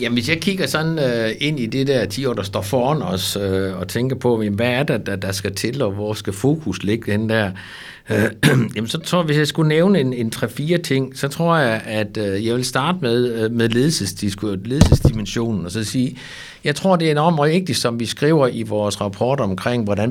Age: 60-79